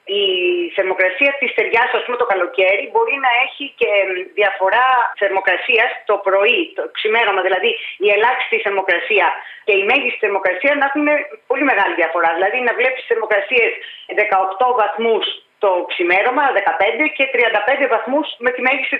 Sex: female